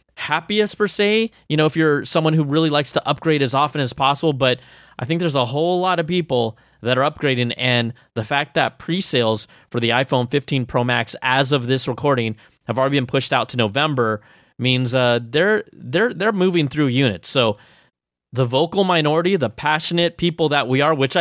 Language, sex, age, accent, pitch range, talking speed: English, male, 20-39, American, 125-160 Hz, 200 wpm